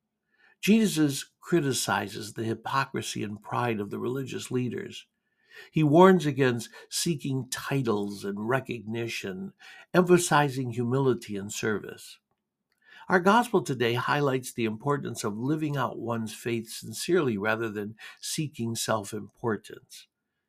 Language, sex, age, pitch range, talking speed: English, male, 60-79, 110-150 Hz, 110 wpm